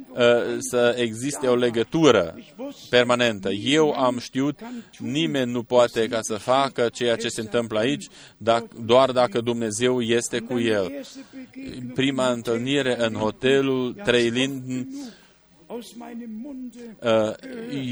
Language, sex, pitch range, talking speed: Romanian, male, 115-135 Hz, 105 wpm